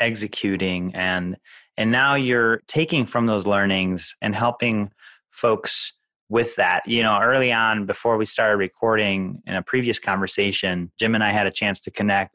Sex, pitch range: male, 100-115 Hz